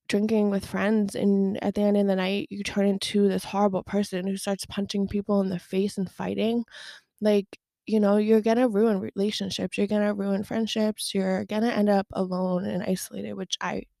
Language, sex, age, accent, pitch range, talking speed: English, female, 20-39, American, 195-225 Hz, 195 wpm